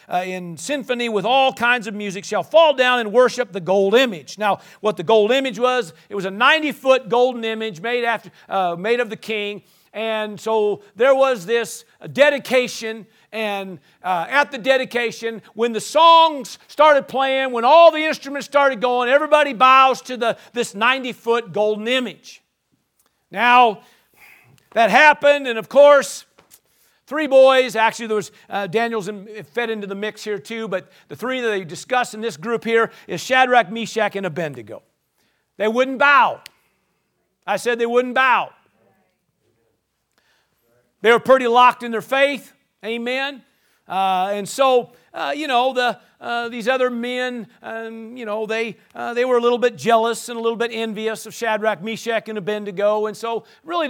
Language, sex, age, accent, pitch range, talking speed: English, male, 50-69, American, 210-255 Hz, 170 wpm